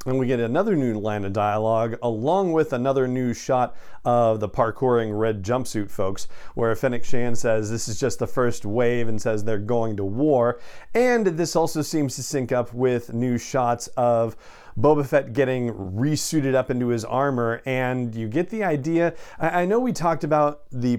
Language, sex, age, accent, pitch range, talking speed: English, male, 40-59, American, 110-135 Hz, 185 wpm